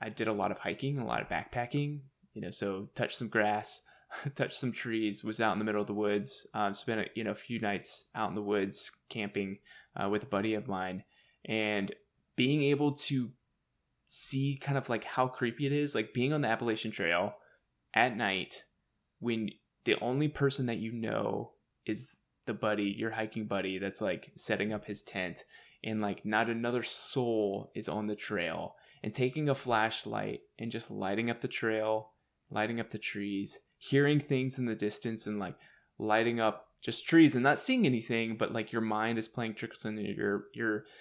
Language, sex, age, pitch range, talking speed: English, male, 20-39, 105-135 Hz, 190 wpm